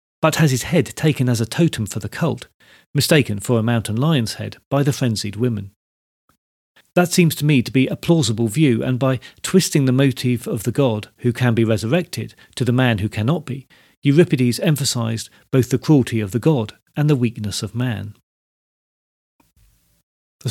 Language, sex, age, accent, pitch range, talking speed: English, male, 40-59, British, 110-145 Hz, 180 wpm